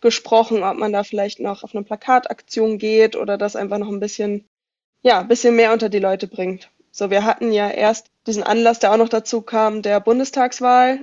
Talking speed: 205 wpm